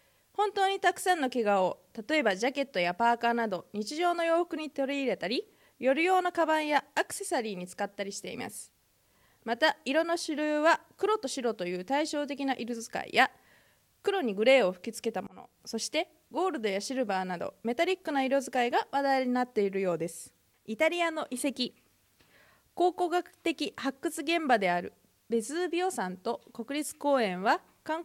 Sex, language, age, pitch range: female, Japanese, 20-39, 220-315 Hz